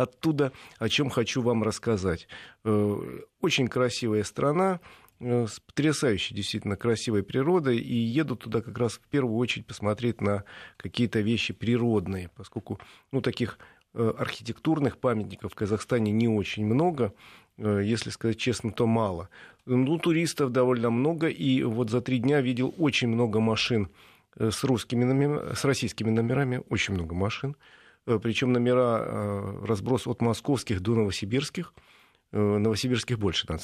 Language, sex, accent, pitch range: Russian, male, native, 105-130 Hz